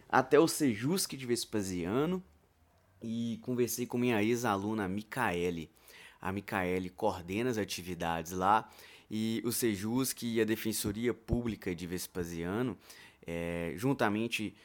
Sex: male